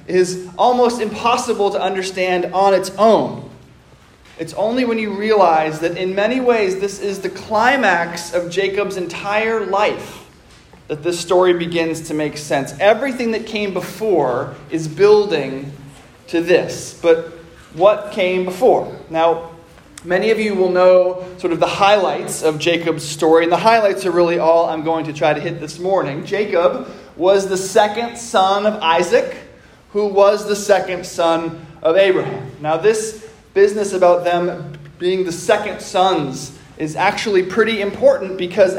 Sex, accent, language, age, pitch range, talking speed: male, American, English, 20-39, 160-205 Hz, 155 wpm